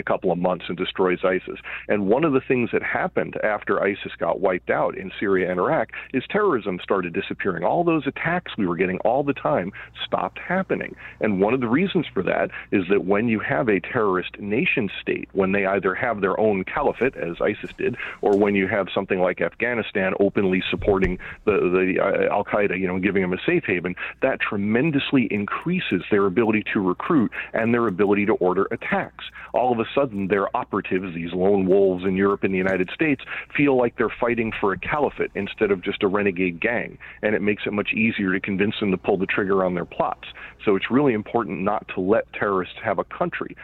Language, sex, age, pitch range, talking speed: English, male, 40-59, 95-115 Hz, 210 wpm